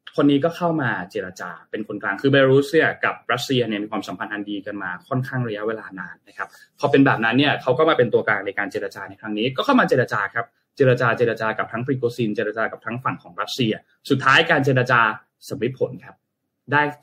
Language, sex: Thai, male